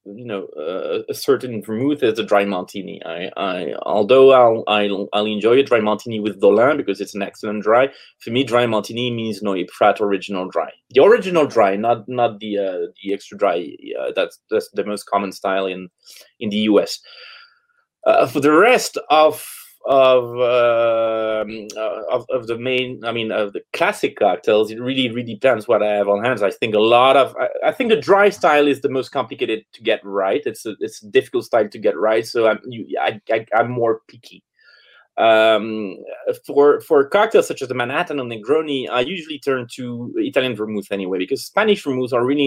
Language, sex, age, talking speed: English, male, 30-49, 200 wpm